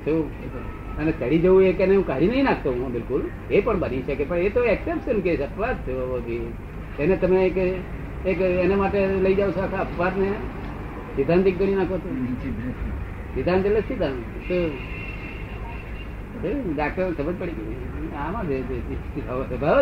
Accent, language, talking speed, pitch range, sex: native, Gujarati, 40 wpm, 115-185 Hz, male